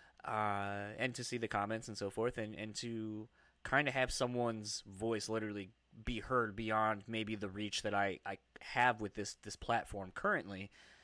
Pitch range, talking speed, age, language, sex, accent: 100-115 Hz, 180 wpm, 20-39, English, male, American